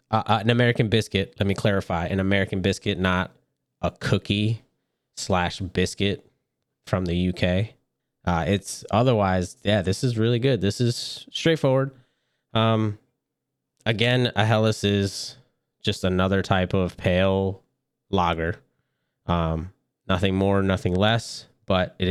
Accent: American